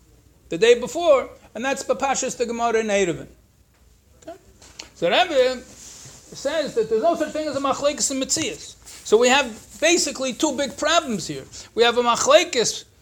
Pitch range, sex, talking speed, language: 210-295 Hz, male, 160 wpm, English